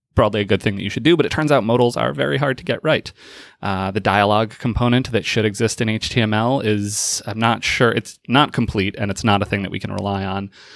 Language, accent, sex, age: English, American, male, 20-39